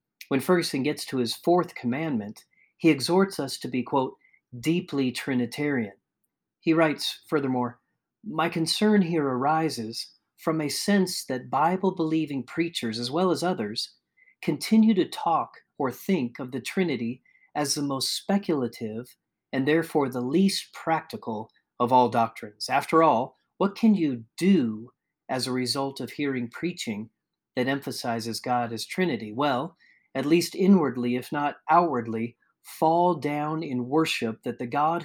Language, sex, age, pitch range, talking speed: English, male, 40-59, 125-165 Hz, 140 wpm